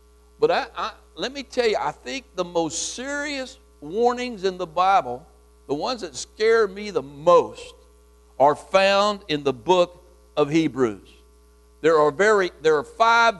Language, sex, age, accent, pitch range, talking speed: English, male, 60-79, American, 140-200 Hz, 160 wpm